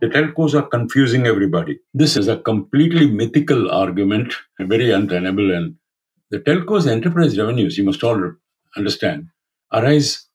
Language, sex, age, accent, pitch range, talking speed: English, male, 50-69, Indian, 110-150 Hz, 135 wpm